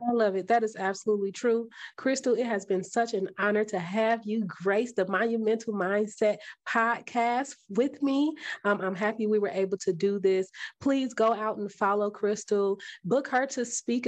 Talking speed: 185 wpm